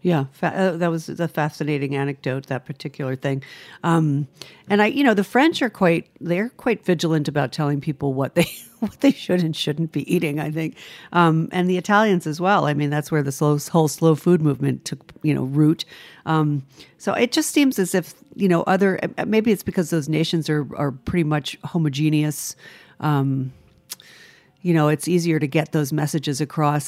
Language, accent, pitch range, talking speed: English, American, 150-190 Hz, 190 wpm